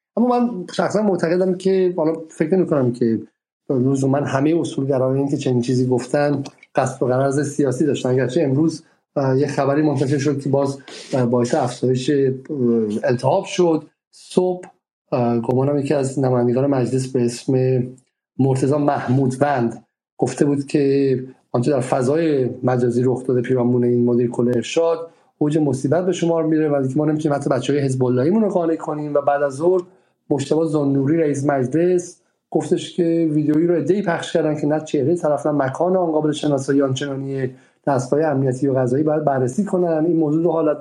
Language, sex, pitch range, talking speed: Persian, male, 135-165 Hz, 155 wpm